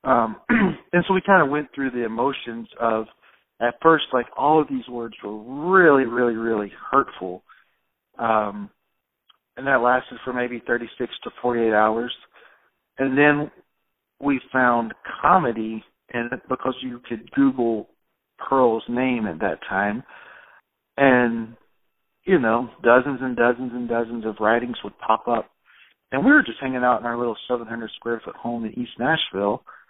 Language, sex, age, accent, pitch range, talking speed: English, male, 50-69, American, 115-145 Hz, 160 wpm